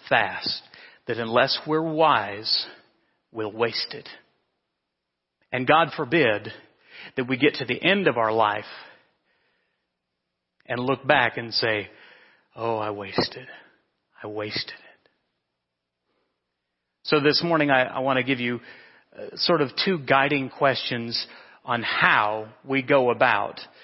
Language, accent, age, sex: English, American, 40-59, male